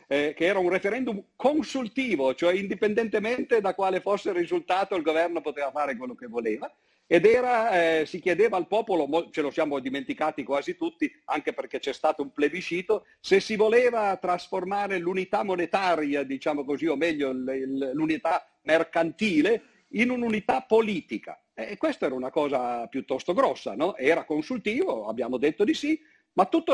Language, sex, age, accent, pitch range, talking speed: Italian, male, 50-69, native, 150-225 Hz, 155 wpm